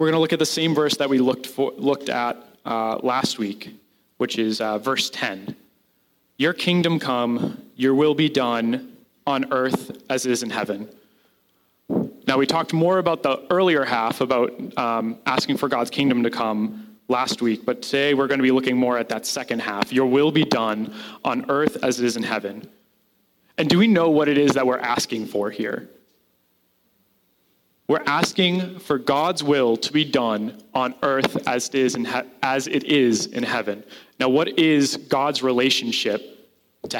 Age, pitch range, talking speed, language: 20-39, 125-160 Hz, 185 wpm, English